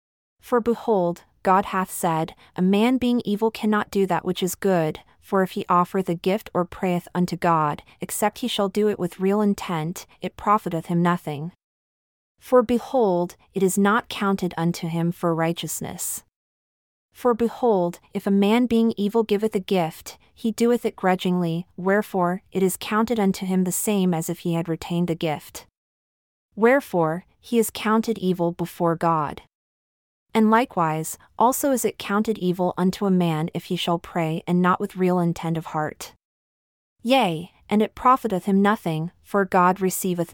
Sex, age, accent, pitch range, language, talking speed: female, 30-49, American, 170-210 Hz, English, 170 wpm